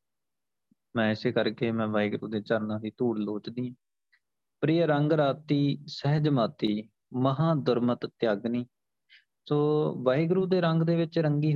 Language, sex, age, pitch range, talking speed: Punjabi, male, 30-49, 115-140 Hz, 130 wpm